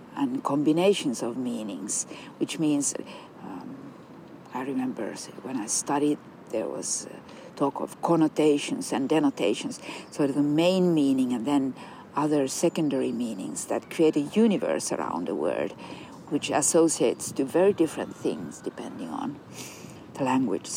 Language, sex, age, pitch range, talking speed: English, female, 50-69, 145-200 Hz, 135 wpm